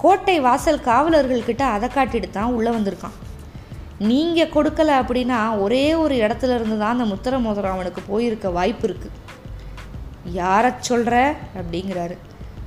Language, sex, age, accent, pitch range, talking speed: Tamil, female, 20-39, native, 200-280 Hz, 125 wpm